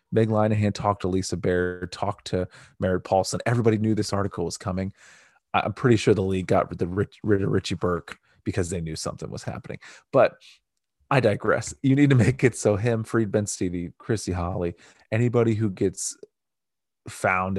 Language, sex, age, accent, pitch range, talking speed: English, male, 30-49, American, 95-115 Hz, 180 wpm